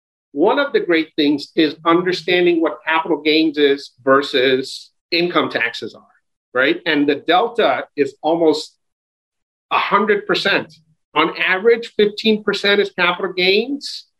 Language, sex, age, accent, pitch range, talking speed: English, male, 50-69, American, 155-205 Hz, 120 wpm